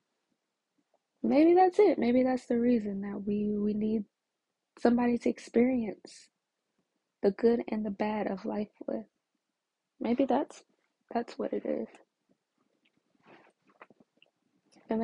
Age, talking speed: 20-39, 115 wpm